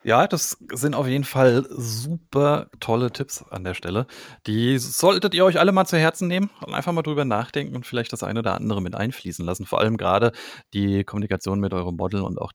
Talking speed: 215 wpm